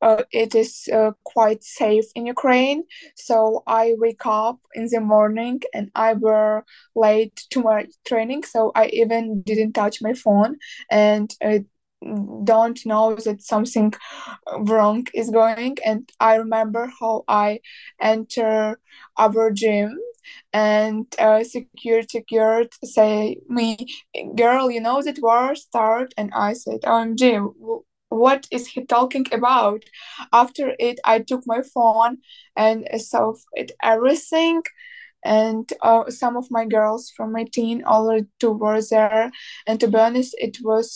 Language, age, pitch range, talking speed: English, 20-39, 220-250 Hz, 145 wpm